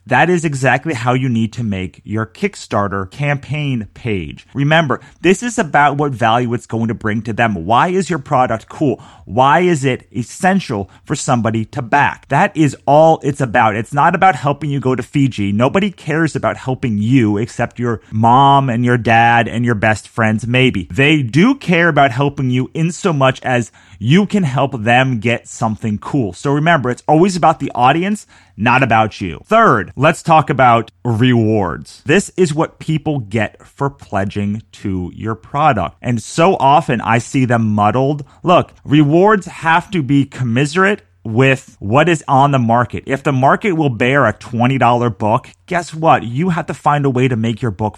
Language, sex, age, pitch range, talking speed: English, male, 30-49, 110-150 Hz, 185 wpm